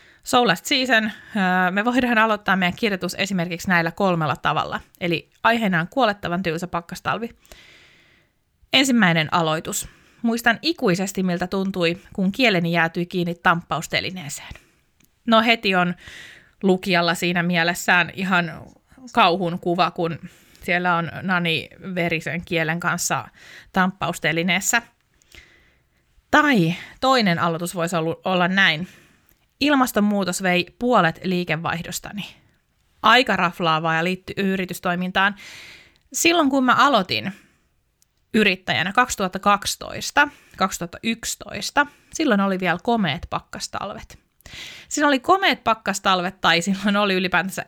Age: 20-39